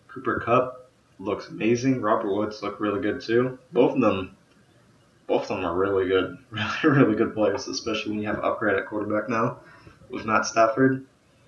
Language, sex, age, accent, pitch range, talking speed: English, male, 20-39, American, 105-125 Hz, 185 wpm